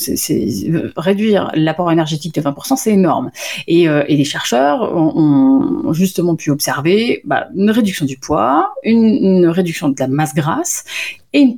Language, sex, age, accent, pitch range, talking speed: French, female, 30-49, French, 155-205 Hz, 160 wpm